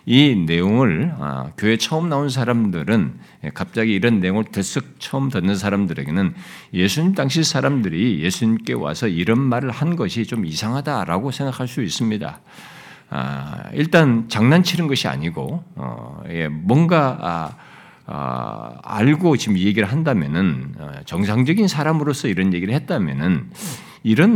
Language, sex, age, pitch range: Korean, male, 50-69, 105-170 Hz